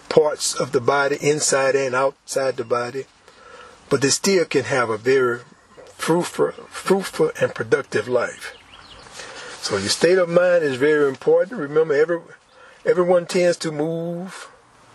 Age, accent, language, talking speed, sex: 40-59, American, English, 140 wpm, male